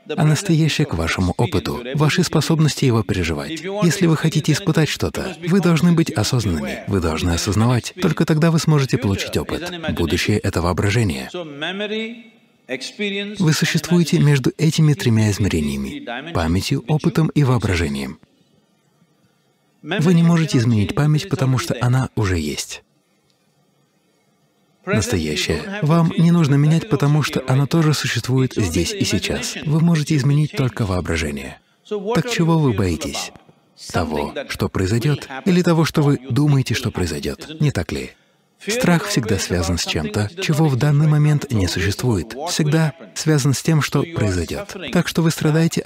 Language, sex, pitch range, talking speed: English, male, 105-165 Hz, 145 wpm